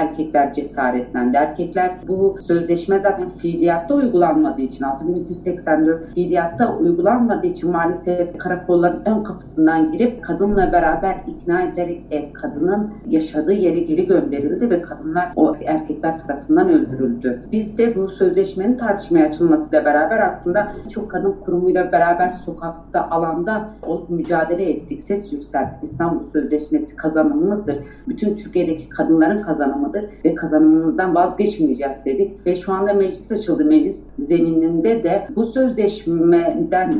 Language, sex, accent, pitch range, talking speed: Turkish, female, native, 165-225 Hz, 120 wpm